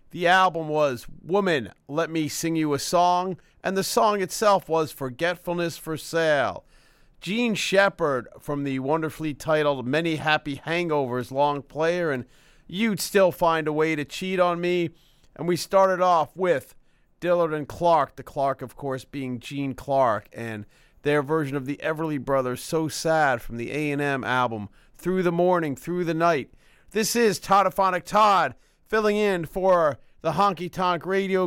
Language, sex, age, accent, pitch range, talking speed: English, male, 40-59, American, 150-190 Hz, 160 wpm